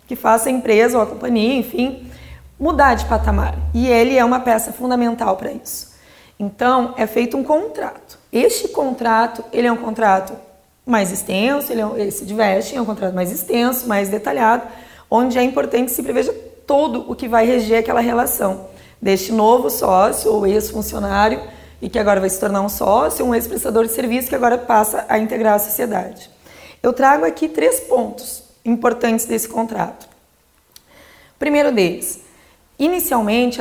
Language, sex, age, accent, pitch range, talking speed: Portuguese, female, 20-39, Brazilian, 210-250 Hz, 160 wpm